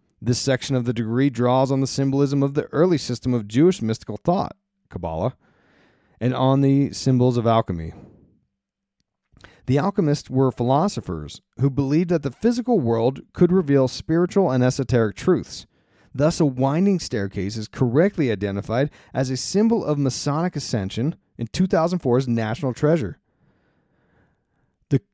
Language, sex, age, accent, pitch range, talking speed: English, male, 40-59, American, 115-160 Hz, 140 wpm